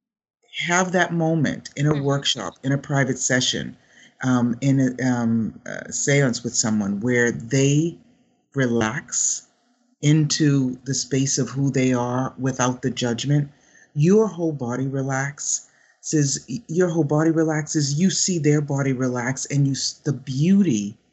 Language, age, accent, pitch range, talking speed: English, 50-69, American, 120-150 Hz, 135 wpm